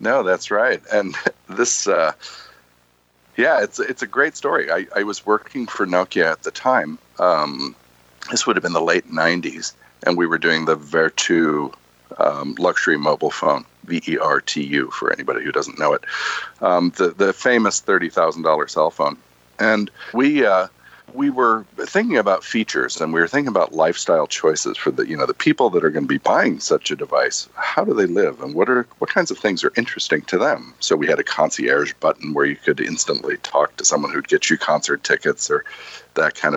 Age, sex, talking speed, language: 40-59, male, 200 wpm, English